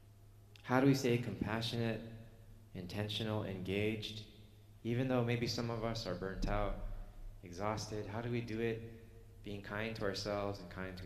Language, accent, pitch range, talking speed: English, American, 100-110 Hz, 155 wpm